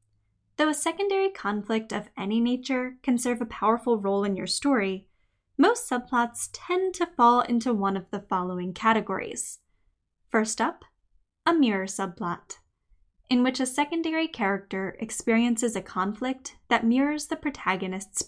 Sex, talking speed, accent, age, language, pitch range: female, 140 wpm, American, 10-29, English, 195-275 Hz